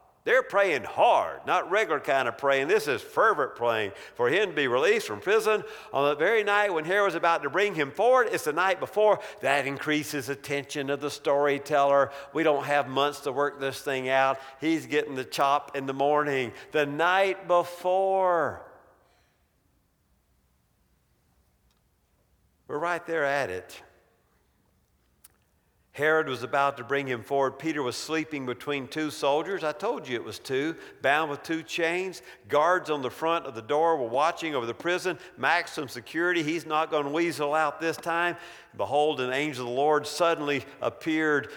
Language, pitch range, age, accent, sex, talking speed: English, 140-180 Hz, 50-69, American, male, 170 wpm